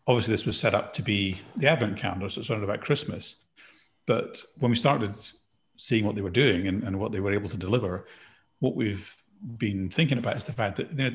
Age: 30-49